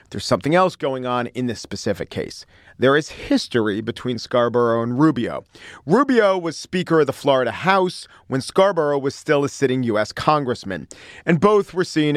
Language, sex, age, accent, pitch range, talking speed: English, male, 40-59, American, 120-155 Hz, 175 wpm